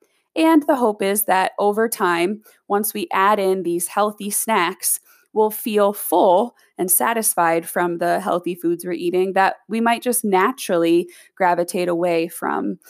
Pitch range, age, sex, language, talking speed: 175-220 Hz, 20-39, female, English, 155 wpm